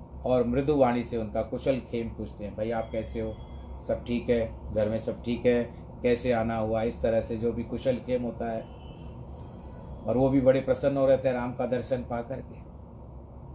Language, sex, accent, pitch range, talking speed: Hindi, male, native, 110-130 Hz, 205 wpm